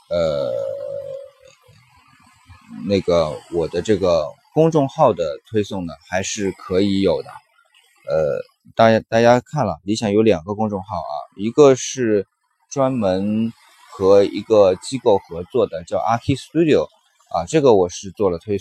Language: Chinese